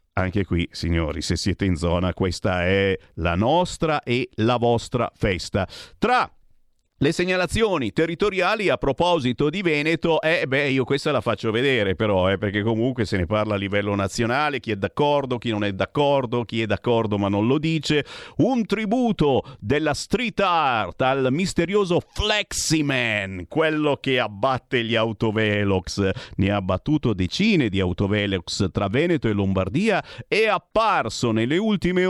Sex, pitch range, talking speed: male, 105-155 Hz, 150 wpm